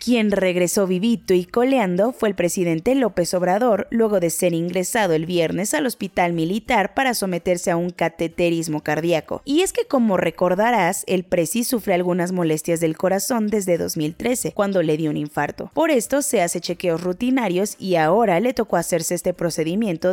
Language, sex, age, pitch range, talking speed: Spanish, female, 20-39, 170-220 Hz, 170 wpm